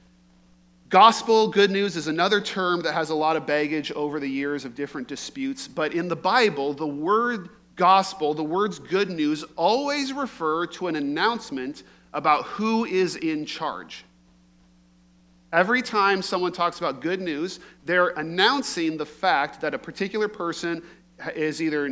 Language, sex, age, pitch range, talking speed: English, male, 40-59, 145-190 Hz, 155 wpm